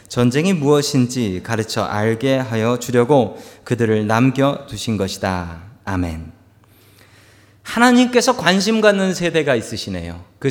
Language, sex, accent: Korean, male, native